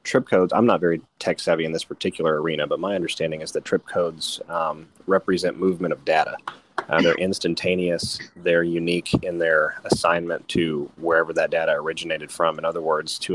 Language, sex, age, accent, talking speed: English, male, 30-49, American, 185 wpm